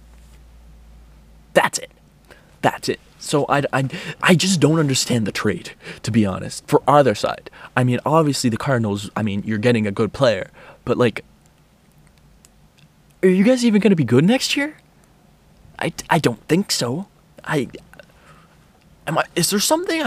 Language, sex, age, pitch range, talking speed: English, male, 20-39, 120-200 Hz, 160 wpm